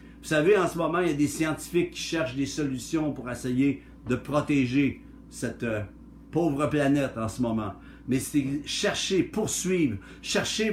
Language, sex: French, male